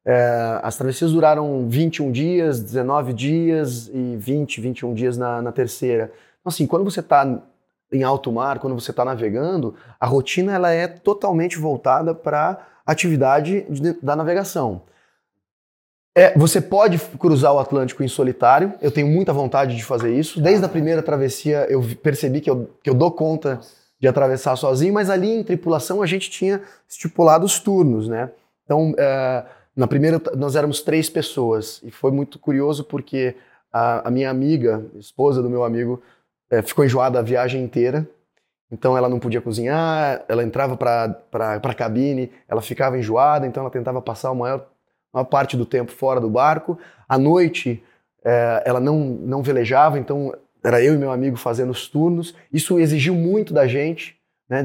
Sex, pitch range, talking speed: male, 125-155 Hz, 170 wpm